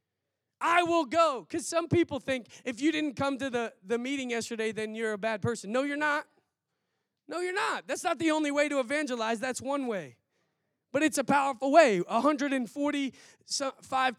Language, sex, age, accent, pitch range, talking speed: English, male, 20-39, American, 205-290 Hz, 180 wpm